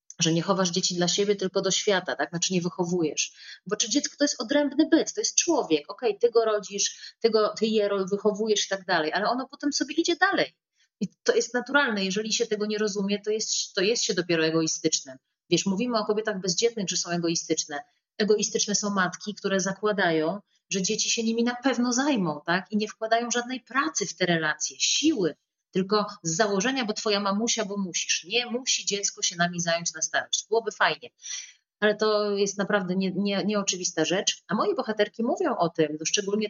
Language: Polish